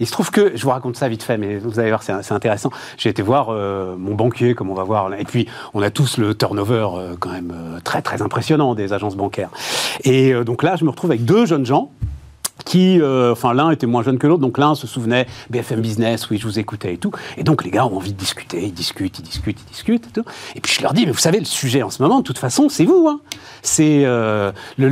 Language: French